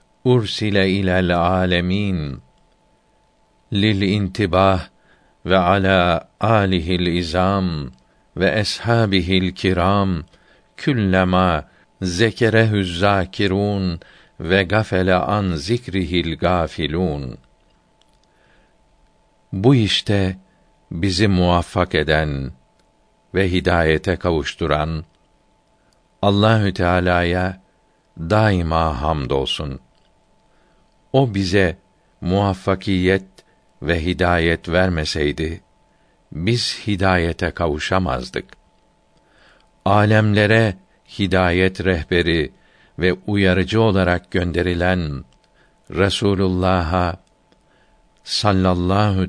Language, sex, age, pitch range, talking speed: Turkish, male, 60-79, 85-100 Hz, 60 wpm